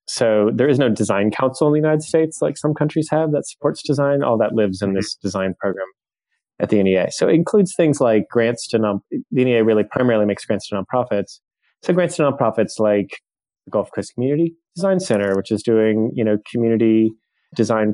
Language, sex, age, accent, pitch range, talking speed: English, male, 20-39, American, 105-125 Hz, 205 wpm